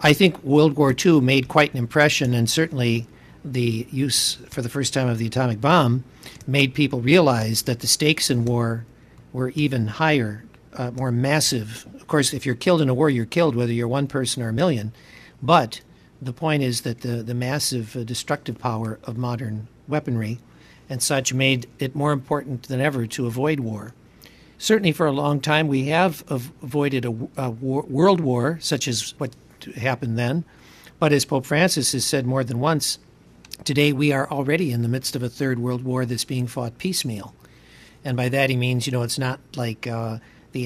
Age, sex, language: 60-79, male, English